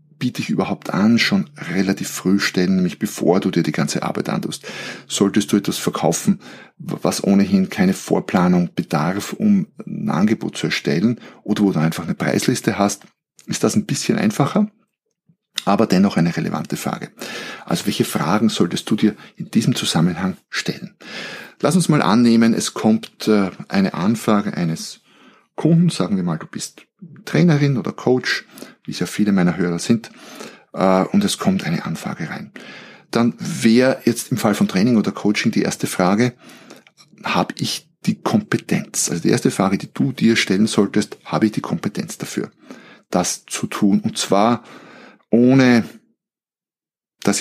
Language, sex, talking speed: German, male, 160 wpm